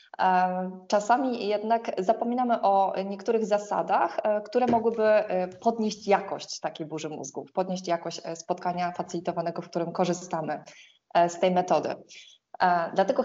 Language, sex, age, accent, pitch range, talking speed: Polish, female, 20-39, native, 175-220 Hz, 110 wpm